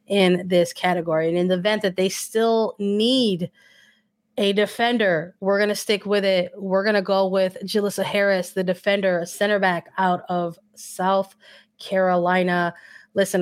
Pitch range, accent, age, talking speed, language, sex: 175-200 Hz, American, 20-39, 155 wpm, English, female